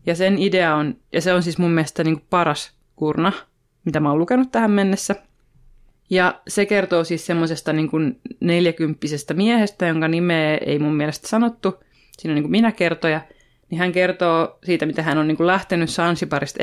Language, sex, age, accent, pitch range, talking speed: Finnish, female, 20-39, native, 150-180 Hz, 185 wpm